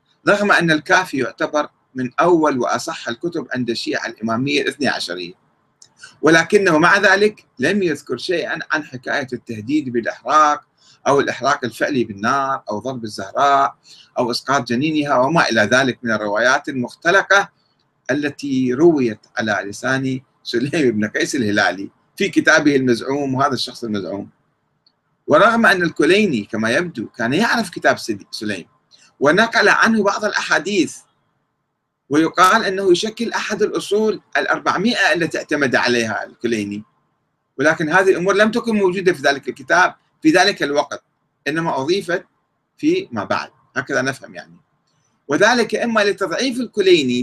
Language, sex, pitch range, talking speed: Arabic, male, 125-195 Hz, 125 wpm